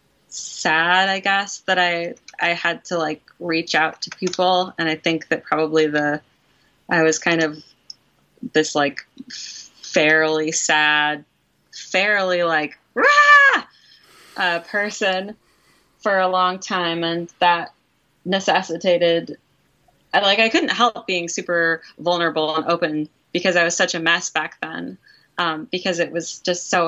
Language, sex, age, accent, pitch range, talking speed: English, female, 20-39, American, 165-195 Hz, 135 wpm